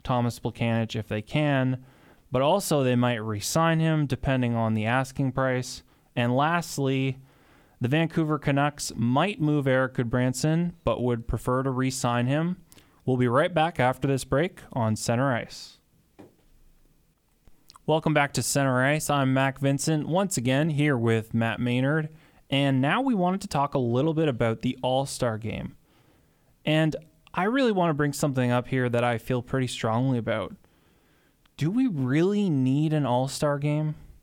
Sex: male